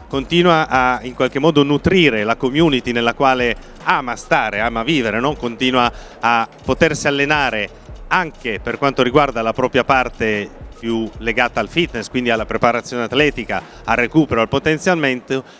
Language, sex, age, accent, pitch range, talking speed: Italian, male, 30-49, native, 120-155 Hz, 140 wpm